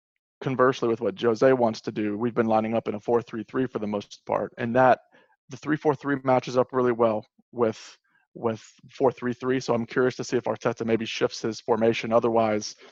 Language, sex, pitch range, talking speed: English, male, 110-125 Hz, 190 wpm